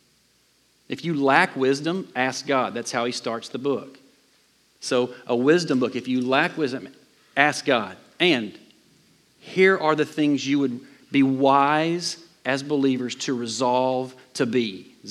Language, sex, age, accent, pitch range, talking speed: English, male, 40-59, American, 125-160 Hz, 150 wpm